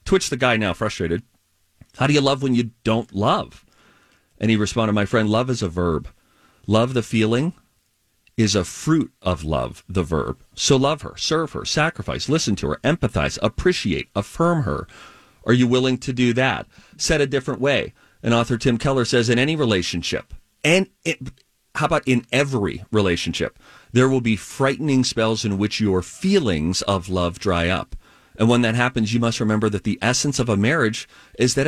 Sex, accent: male, American